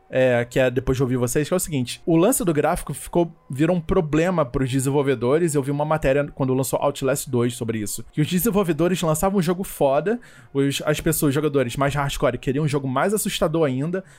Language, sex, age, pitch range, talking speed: Portuguese, male, 20-39, 145-205 Hz, 215 wpm